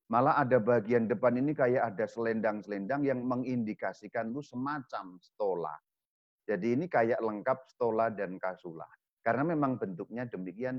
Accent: native